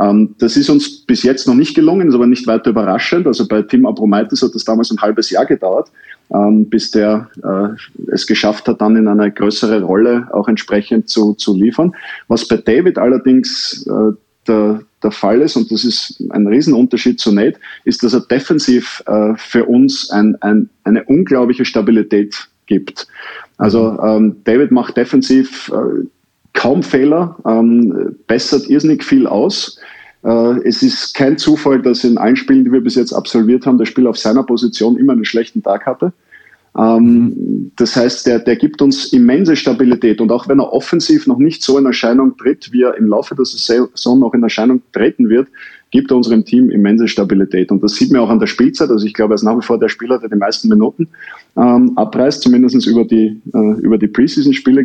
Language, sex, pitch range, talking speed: German, male, 110-135 Hz, 180 wpm